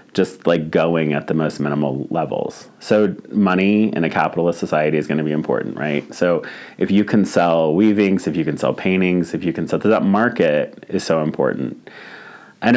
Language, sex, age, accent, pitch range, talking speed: English, male, 30-49, American, 80-95 Hz, 195 wpm